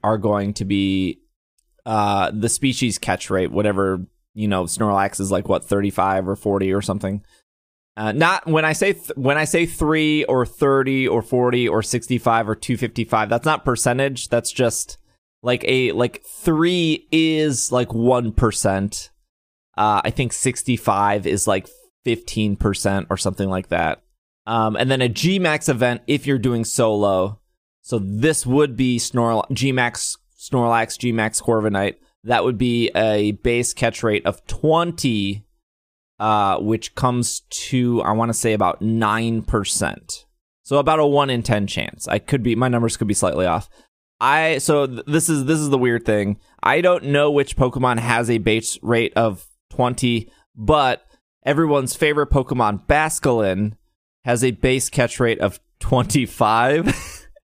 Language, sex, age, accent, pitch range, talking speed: English, male, 20-39, American, 105-135 Hz, 155 wpm